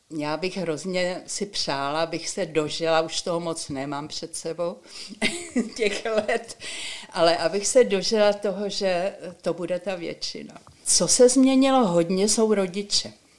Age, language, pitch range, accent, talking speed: 60-79, Czech, 150-190 Hz, native, 145 wpm